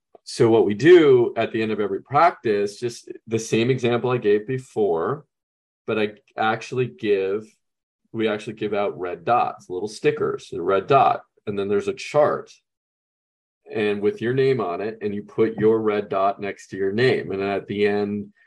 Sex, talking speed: male, 185 wpm